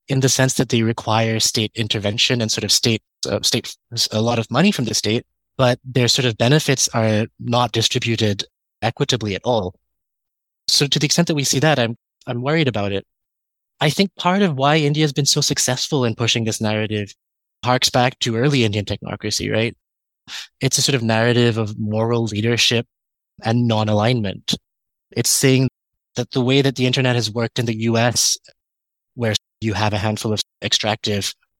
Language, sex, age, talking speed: English, male, 20-39, 185 wpm